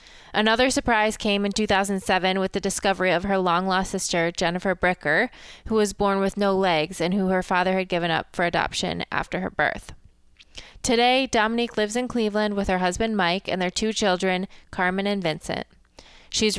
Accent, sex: American, female